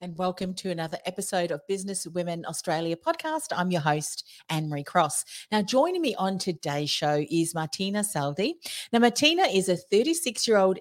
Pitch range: 160-210 Hz